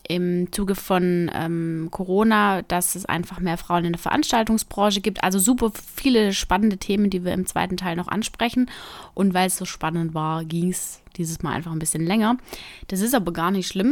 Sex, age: female, 20-39